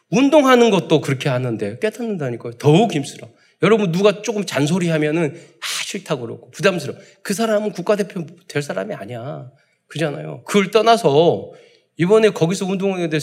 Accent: native